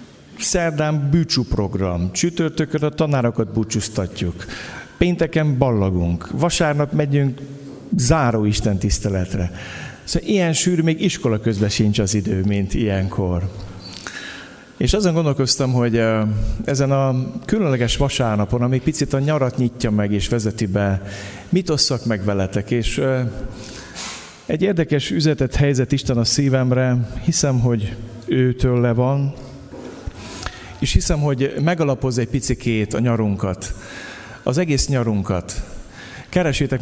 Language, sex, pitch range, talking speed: Hungarian, male, 110-145 Hz, 115 wpm